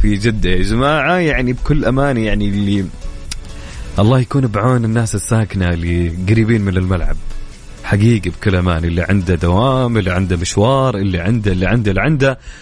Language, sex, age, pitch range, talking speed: English, male, 30-49, 95-125 Hz, 155 wpm